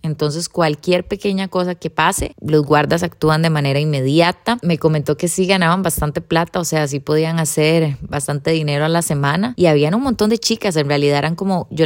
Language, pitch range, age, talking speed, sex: Spanish, 160-195 Hz, 20-39, 200 wpm, female